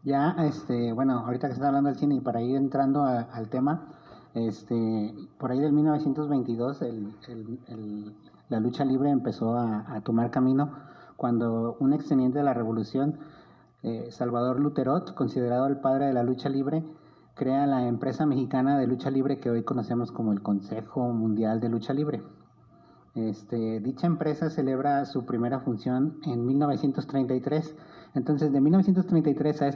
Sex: male